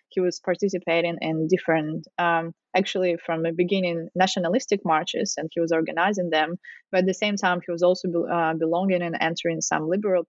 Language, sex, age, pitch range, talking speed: English, female, 20-39, 165-200 Hz, 185 wpm